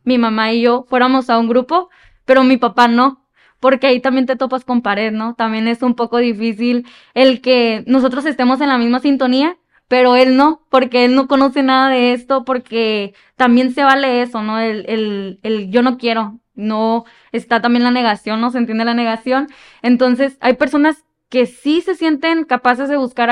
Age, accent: 10-29, Mexican